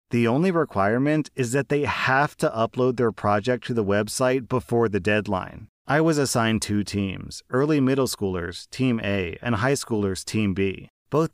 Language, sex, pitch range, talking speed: English, male, 105-130 Hz, 175 wpm